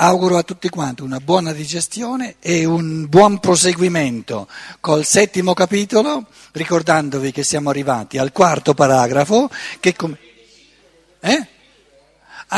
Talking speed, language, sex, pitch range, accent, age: 115 wpm, Italian, male, 170-215 Hz, native, 60-79